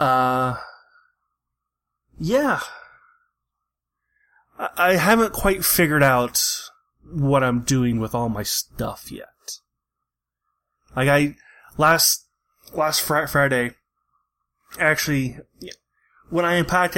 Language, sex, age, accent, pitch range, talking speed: English, male, 20-39, American, 125-165 Hz, 90 wpm